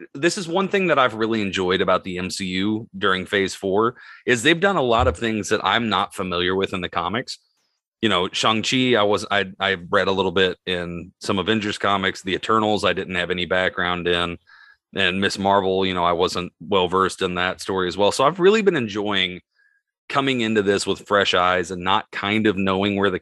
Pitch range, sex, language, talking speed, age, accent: 95-120 Hz, male, English, 215 wpm, 30-49, American